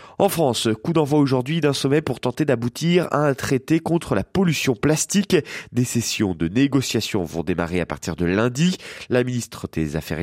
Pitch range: 100-160 Hz